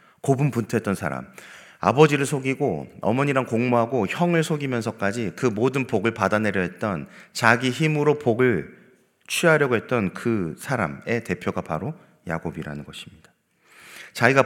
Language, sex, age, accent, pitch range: Korean, male, 30-49, native, 115-145 Hz